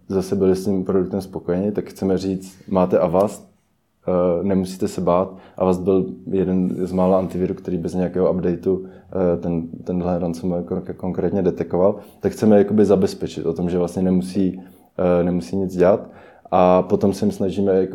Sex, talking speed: male, 150 wpm